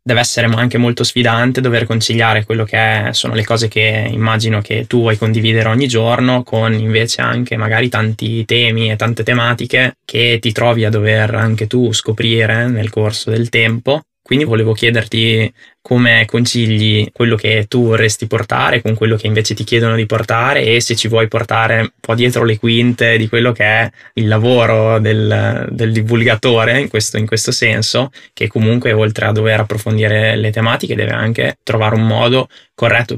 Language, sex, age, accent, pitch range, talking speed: Italian, male, 20-39, native, 110-120 Hz, 175 wpm